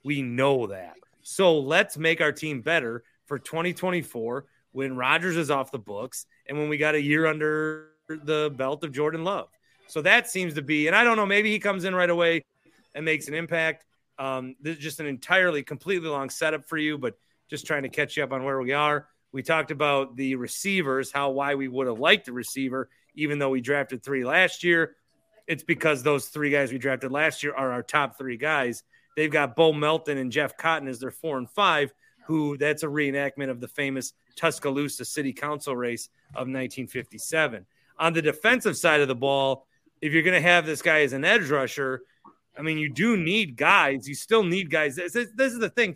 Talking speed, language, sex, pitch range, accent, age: 215 wpm, English, male, 135-165 Hz, American, 30-49